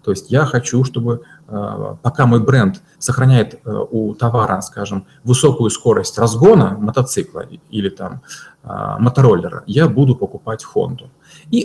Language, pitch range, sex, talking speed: Russian, 115-150 Hz, male, 125 wpm